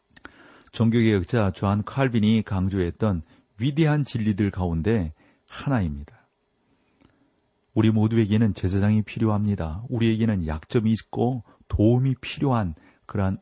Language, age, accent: Korean, 40-59, native